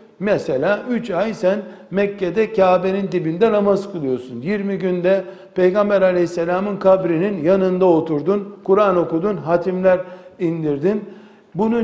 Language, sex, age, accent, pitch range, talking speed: Turkish, male, 60-79, native, 170-205 Hz, 105 wpm